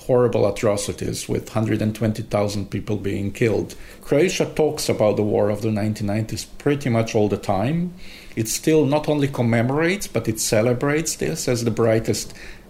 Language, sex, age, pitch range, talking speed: Dutch, male, 50-69, 105-125 Hz, 150 wpm